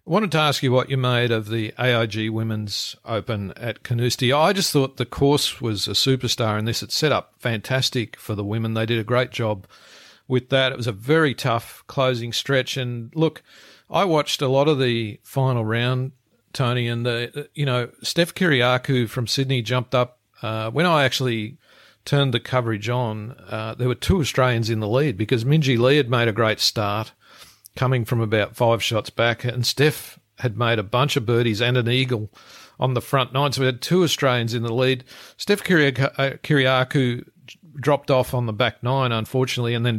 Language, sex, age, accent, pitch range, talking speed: English, male, 50-69, Australian, 110-135 Hz, 200 wpm